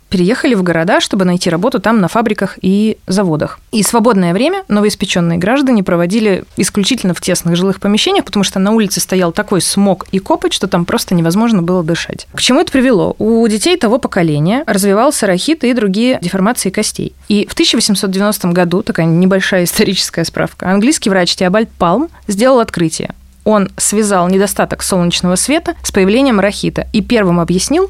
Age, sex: 20-39, female